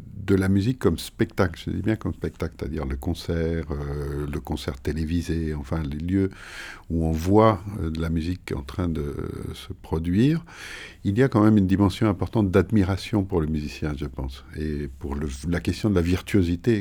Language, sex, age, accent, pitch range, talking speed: French, male, 50-69, French, 80-100 Hz, 195 wpm